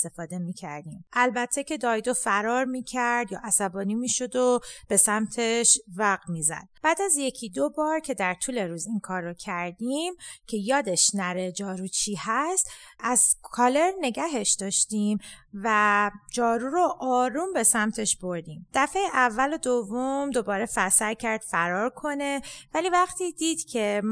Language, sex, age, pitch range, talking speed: English, female, 30-49, 195-275 Hz, 150 wpm